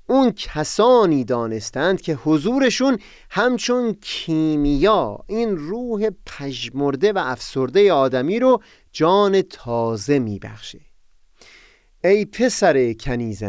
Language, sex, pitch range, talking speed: Persian, male, 115-190 Hz, 95 wpm